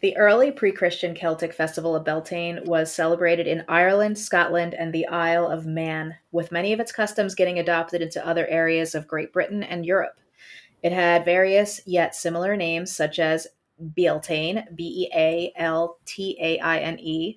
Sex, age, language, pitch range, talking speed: female, 30-49, English, 160-180 Hz, 145 wpm